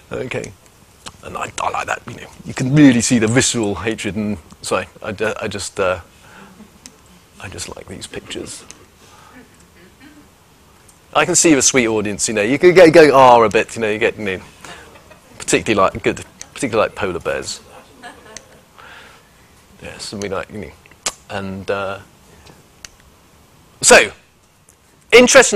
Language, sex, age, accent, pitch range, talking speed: English, male, 30-49, British, 125-180 Hz, 155 wpm